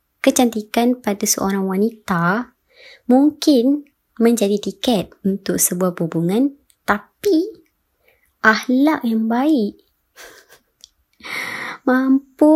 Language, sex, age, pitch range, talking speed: Malay, male, 20-39, 190-245 Hz, 70 wpm